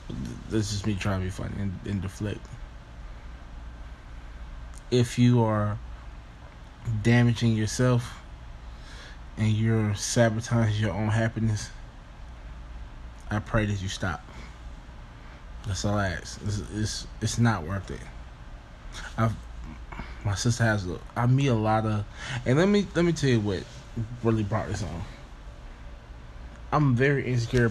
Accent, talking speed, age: American, 125 wpm, 20-39